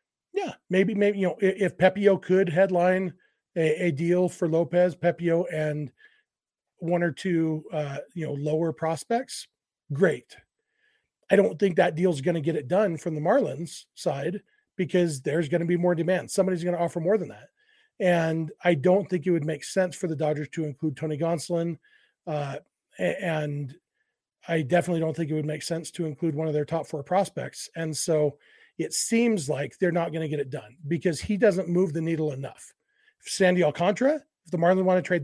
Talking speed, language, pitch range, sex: 195 wpm, English, 160-195 Hz, male